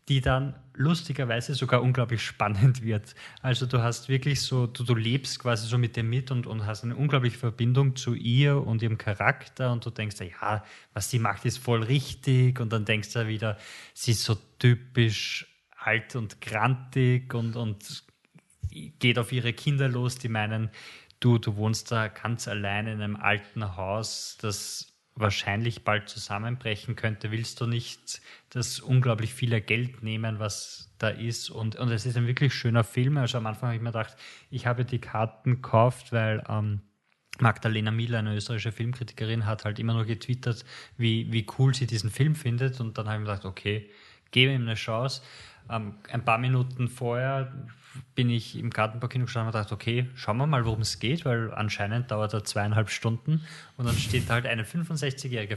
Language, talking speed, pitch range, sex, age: German, 185 wpm, 110-130 Hz, male, 20-39